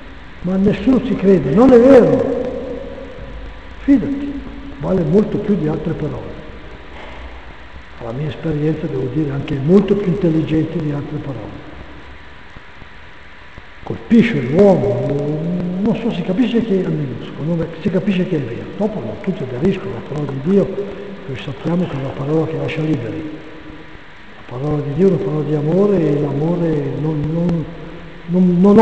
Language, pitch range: Italian, 150-200 Hz